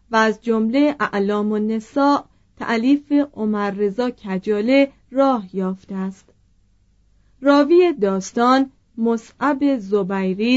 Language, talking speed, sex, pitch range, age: Persian, 90 wpm, female, 195-265 Hz, 40-59